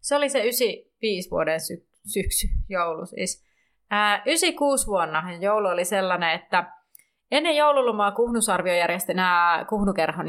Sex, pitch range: female, 170-225 Hz